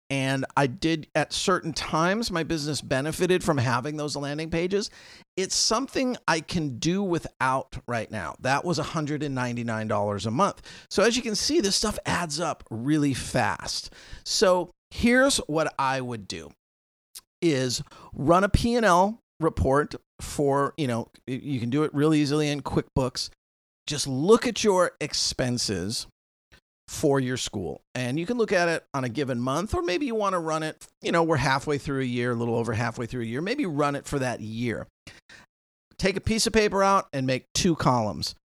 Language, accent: English, American